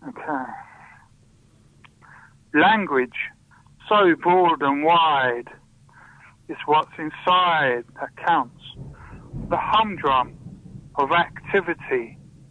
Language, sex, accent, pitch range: English, male, British, 125-170 Hz